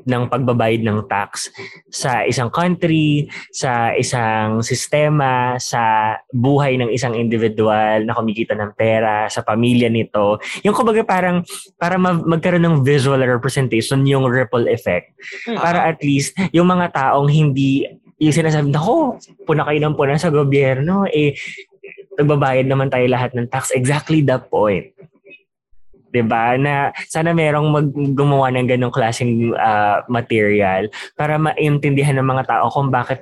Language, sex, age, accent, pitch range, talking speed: Filipino, male, 20-39, native, 120-150 Hz, 135 wpm